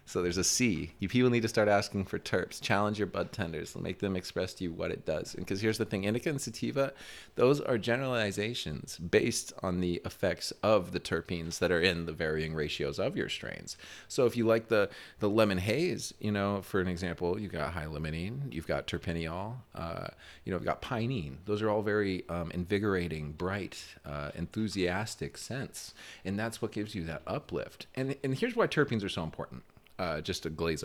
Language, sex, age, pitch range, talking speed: English, male, 30-49, 85-110 Hz, 205 wpm